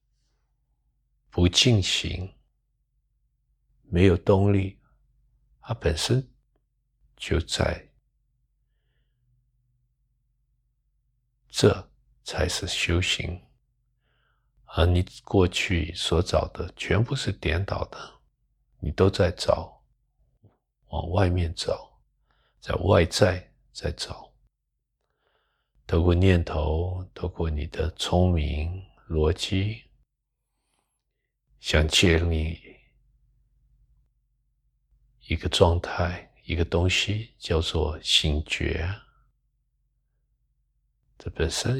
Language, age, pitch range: Chinese, 60-79, 85-120 Hz